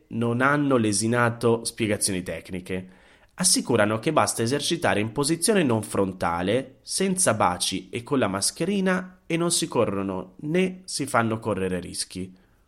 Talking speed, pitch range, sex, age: 135 wpm, 95-125 Hz, male, 30-49